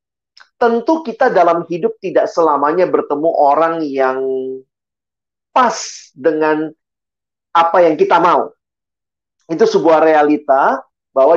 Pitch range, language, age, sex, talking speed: 140-220 Hz, Indonesian, 40-59, male, 100 wpm